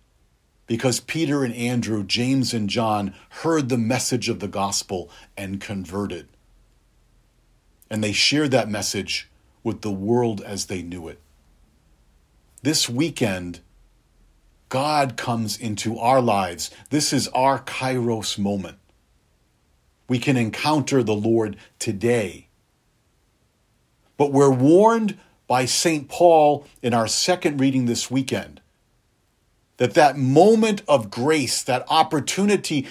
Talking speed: 115 wpm